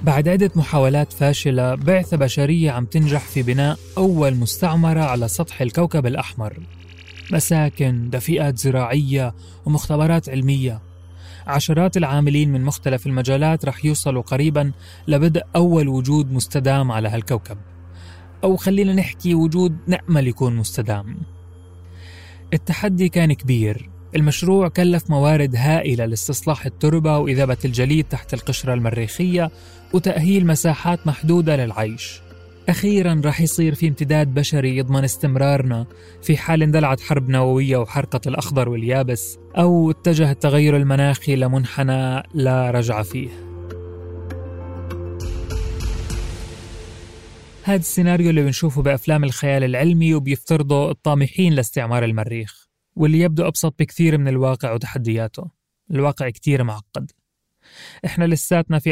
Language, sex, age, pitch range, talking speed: Arabic, male, 30-49, 120-160 Hz, 110 wpm